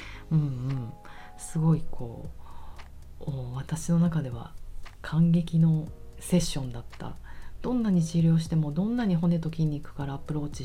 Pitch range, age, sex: 130-170 Hz, 40-59, female